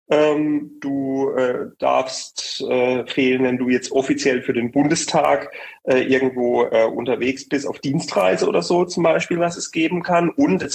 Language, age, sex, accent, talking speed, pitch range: German, 30-49, male, German, 160 wpm, 125-150 Hz